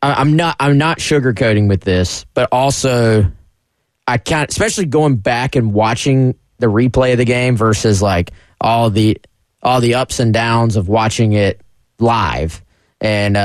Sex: male